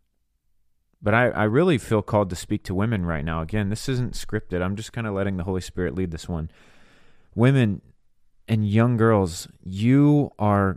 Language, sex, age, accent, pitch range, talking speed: English, male, 30-49, American, 90-115 Hz, 185 wpm